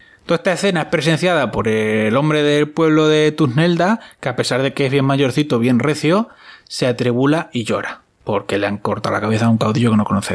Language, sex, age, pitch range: Spanish, male, 20-39, 120-175 Hz